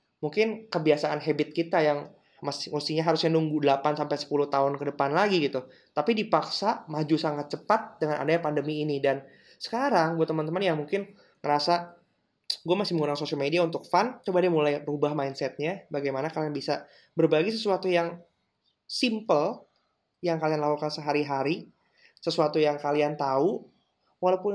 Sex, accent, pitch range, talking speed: male, native, 145-175 Hz, 140 wpm